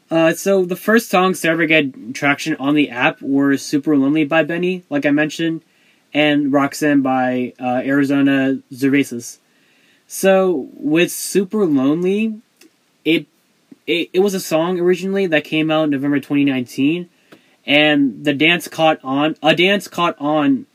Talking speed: 155 wpm